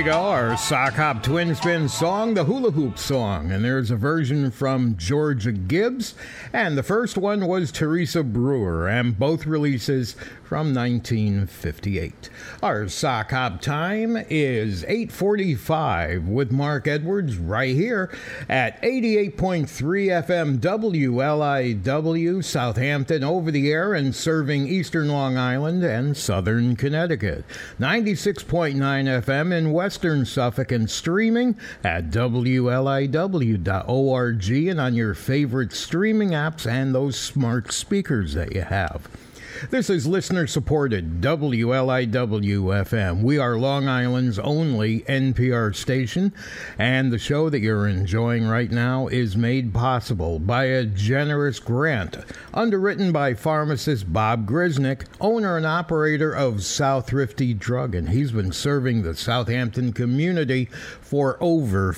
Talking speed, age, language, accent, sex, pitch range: 125 wpm, 60-79, English, American, male, 115-160 Hz